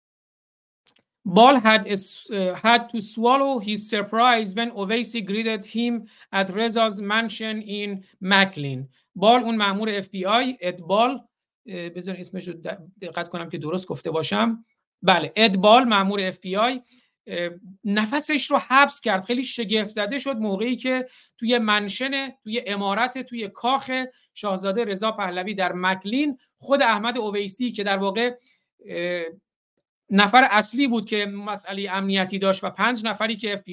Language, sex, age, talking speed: Persian, male, 50-69, 125 wpm